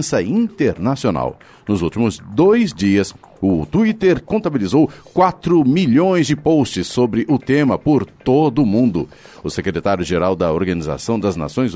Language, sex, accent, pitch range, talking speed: Portuguese, male, Brazilian, 105-155 Hz, 130 wpm